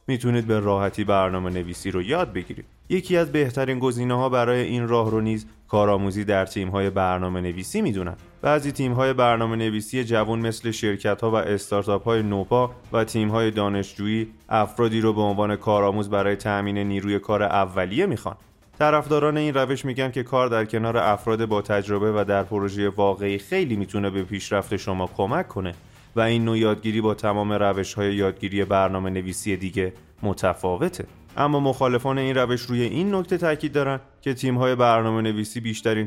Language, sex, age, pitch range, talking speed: Persian, male, 30-49, 100-120 Hz, 165 wpm